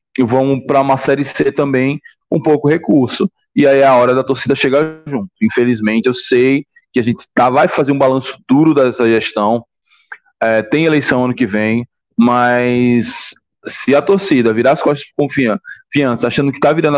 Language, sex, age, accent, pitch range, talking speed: Portuguese, male, 20-39, Brazilian, 120-140 Hz, 185 wpm